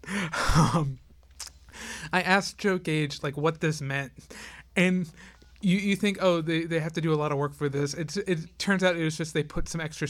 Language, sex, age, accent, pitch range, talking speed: English, male, 30-49, American, 140-165 Hz, 215 wpm